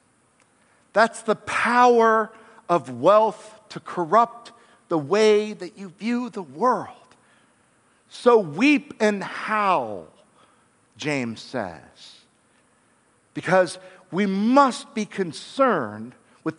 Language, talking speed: English, 95 wpm